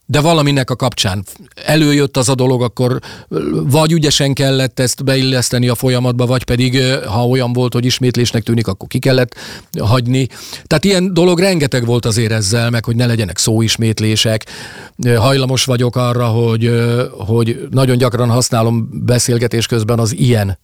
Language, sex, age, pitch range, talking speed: Hungarian, male, 40-59, 115-135 Hz, 150 wpm